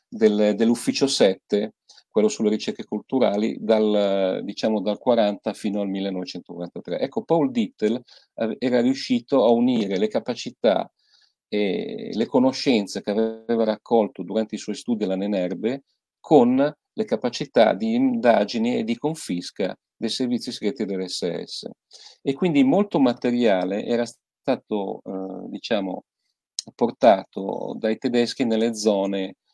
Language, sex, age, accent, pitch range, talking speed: Italian, male, 40-59, native, 100-125 Hz, 120 wpm